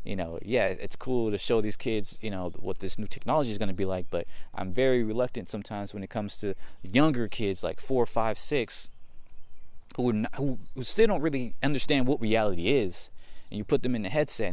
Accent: American